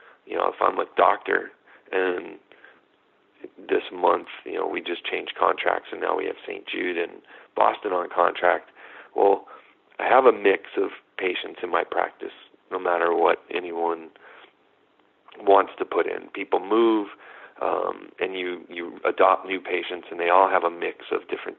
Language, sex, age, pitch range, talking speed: English, male, 40-59, 360-430 Hz, 165 wpm